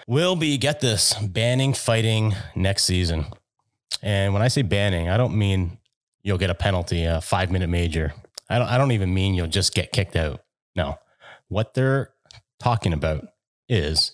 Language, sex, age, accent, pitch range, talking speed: English, male, 30-49, American, 95-120 Hz, 165 wpm